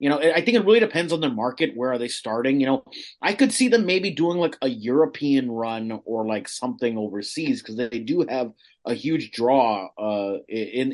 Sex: male